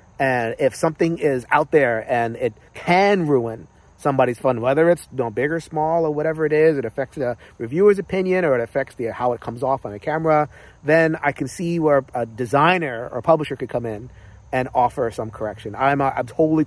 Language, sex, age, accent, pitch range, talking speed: English, male, 40-59, American, 125-170 Hz, 205 wpm